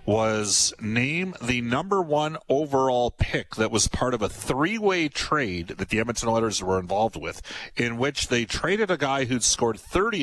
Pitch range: 95-125 Hz